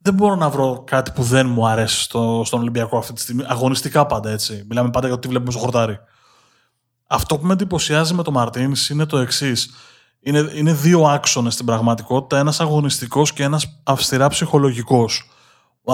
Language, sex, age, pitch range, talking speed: Greek, male, 20-39, 120-150 Hz, 180 wpm